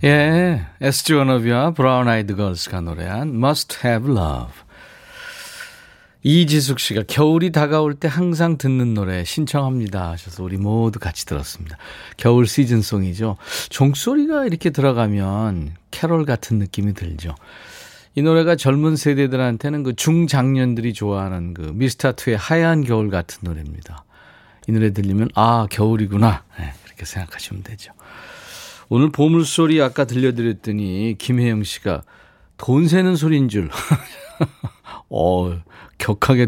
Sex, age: male, 40-59